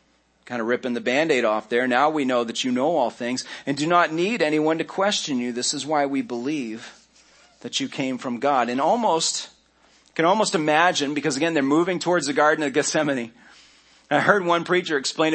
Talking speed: 205 wpm